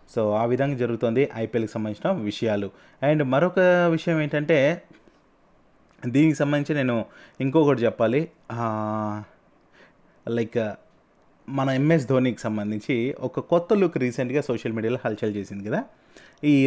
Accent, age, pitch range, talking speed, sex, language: native, 20-39, 115-150 Hz, 110 wpm, male, Telugu